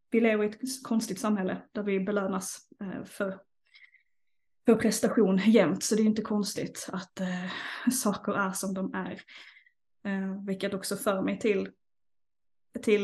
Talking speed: 145 wpm